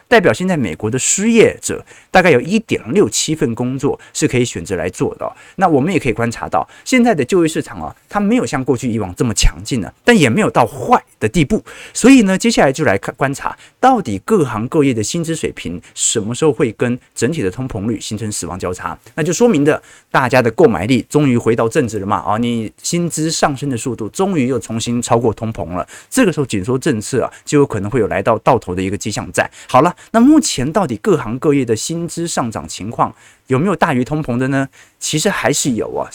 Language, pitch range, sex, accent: Chinese, 110-160 Hz, male, native